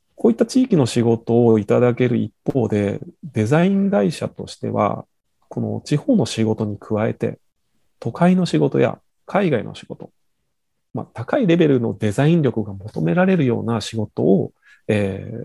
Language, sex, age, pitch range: Japanese, male, 40-59, 110-170 Hz